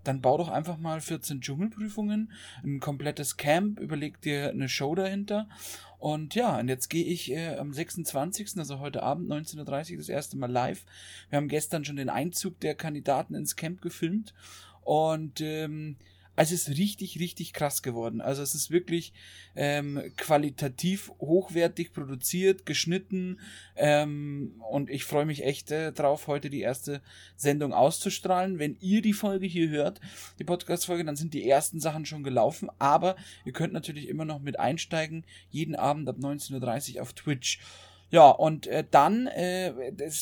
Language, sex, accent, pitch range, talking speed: German, male, German, 140-175 Hz, 165 wpm